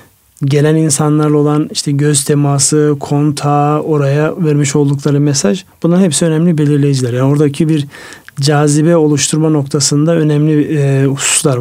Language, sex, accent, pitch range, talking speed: Turkish, male, native, 135-155 Hz, 125 wpm